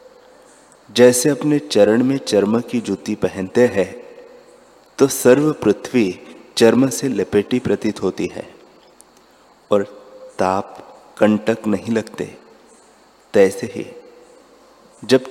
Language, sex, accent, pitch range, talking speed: Hindi, male, native, 105-130 Hz, 100 wpm